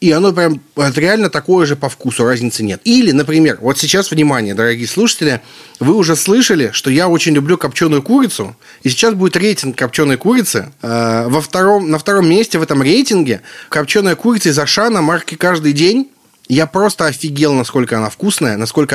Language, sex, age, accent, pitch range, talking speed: Russian, male, 30-49, native, 135-175 Hz, 165 wpm